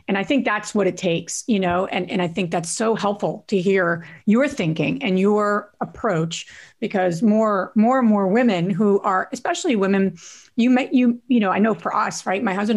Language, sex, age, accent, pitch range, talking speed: English, female, 40-59, American, 175-225 Hz, 210 wpm